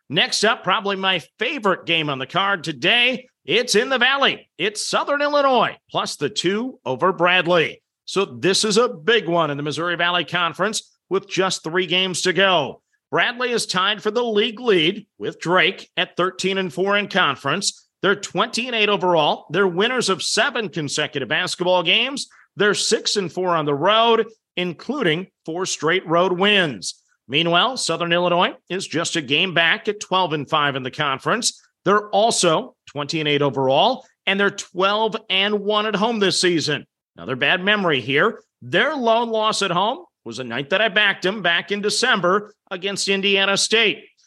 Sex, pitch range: male, 165-215 Hz